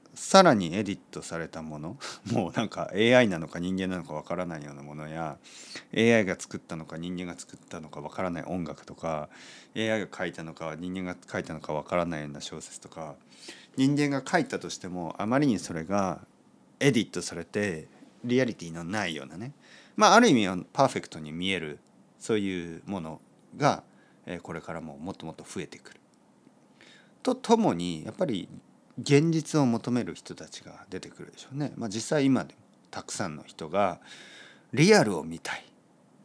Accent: native